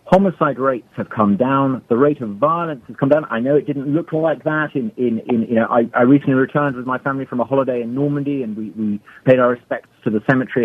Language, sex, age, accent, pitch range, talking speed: English, male, 40-59, British, 115-145 Hz, 255 wpm